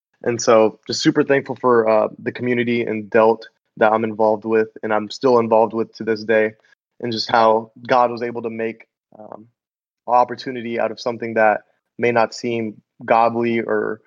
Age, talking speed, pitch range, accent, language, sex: 20-39, 180 wpm, 110-120 Hz, American, English, male